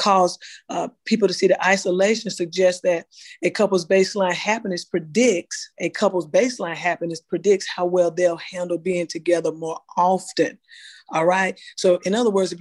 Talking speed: 160 wpm